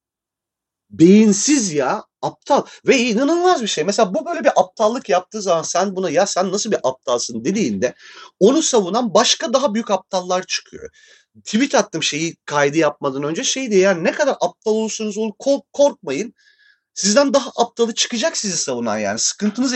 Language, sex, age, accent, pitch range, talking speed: Turkish, male, 40-59, native, 175-240 Hz, 160 wpm